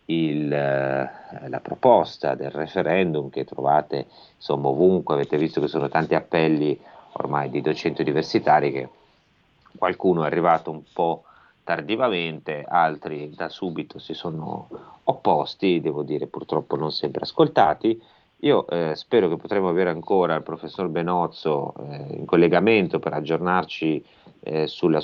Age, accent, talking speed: 40-59, native, 130 wpm